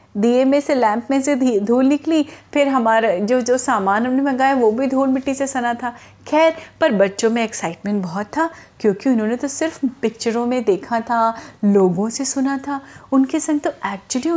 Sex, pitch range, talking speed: female, 210-270 Hz, 190 wpm